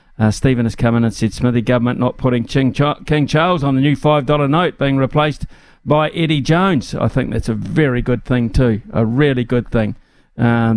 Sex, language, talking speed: male, English, 210 wpm